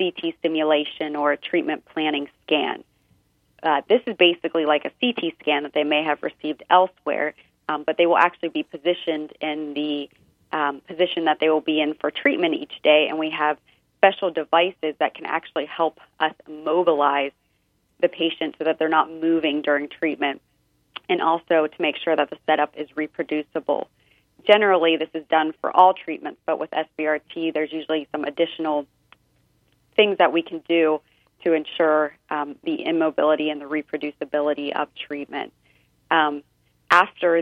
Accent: American